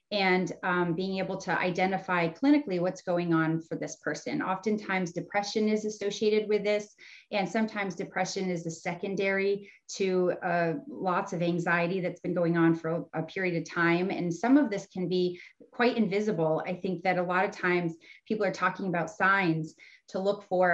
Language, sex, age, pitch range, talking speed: English, female, 30-49, 175-195 Hz, 180 wpm